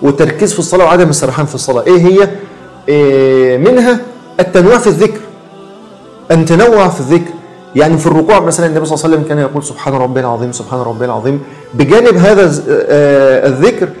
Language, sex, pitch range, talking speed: Arabic, male, 150-190 Hz, 165 wpm